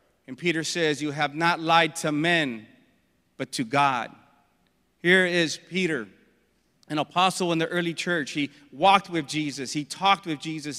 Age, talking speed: 40-59, 160 wpm